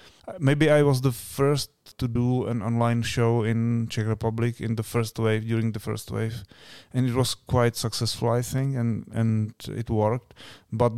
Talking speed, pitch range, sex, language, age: 180 wpm, 110-125 Hz, male, Czech, 30-49